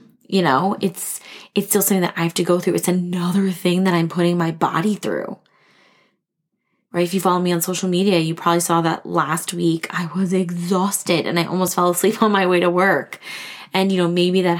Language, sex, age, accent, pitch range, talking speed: English, female, 20-39, American, 175-195 Hz, 220 wpm